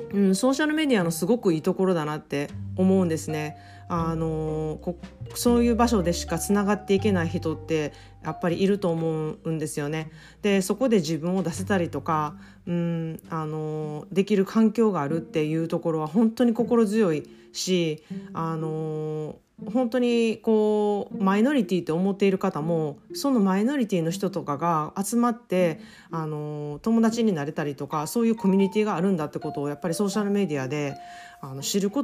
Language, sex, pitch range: Japanese, female, 155-215 Hz